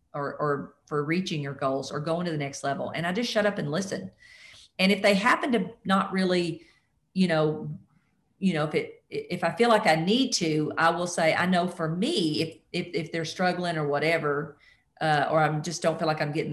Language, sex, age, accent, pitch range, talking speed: English, female, 40-59, American, 150-190 Hz, 225 wpm